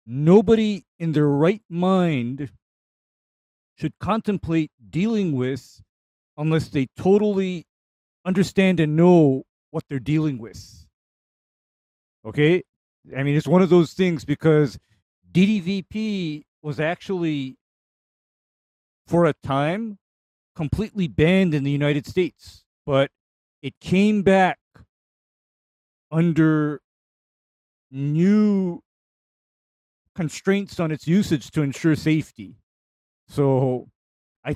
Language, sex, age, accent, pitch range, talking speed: English, male, 40-59, American, 130-185 Hz, 95 wpm